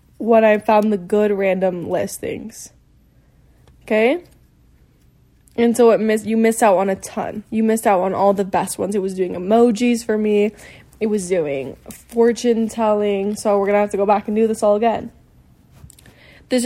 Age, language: 10-29, English